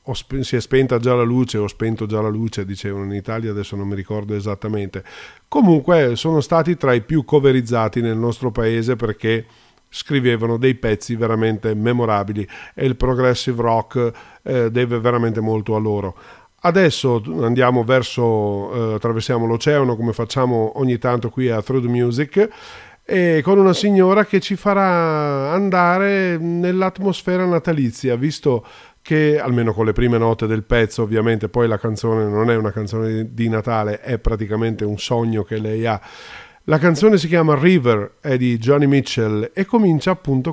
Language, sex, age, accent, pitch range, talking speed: Italian, male, 40-59, native, 110-140 Hz, 160 wpm